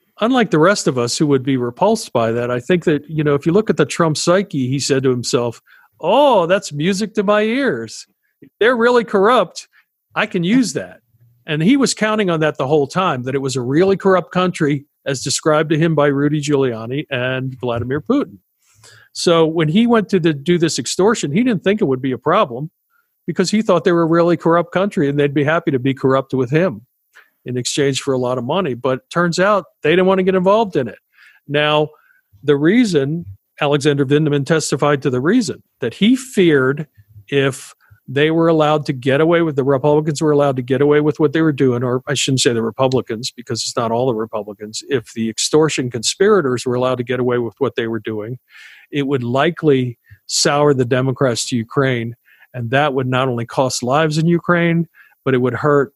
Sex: male